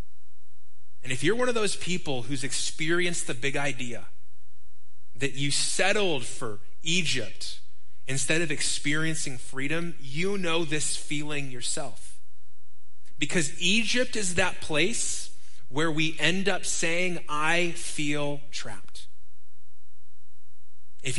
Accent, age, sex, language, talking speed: American, 20-39, male, English, 115 wpm